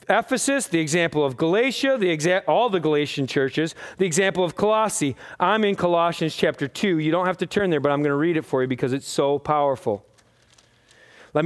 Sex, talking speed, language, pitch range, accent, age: male, 205 wpm, English, 155-220 Hz, American, 40-59